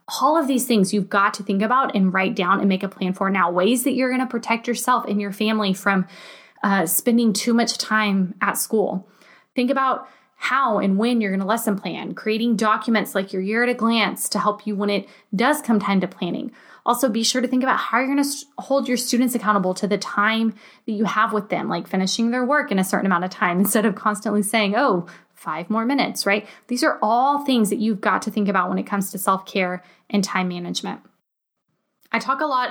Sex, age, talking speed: female, 20-39, 235 wpm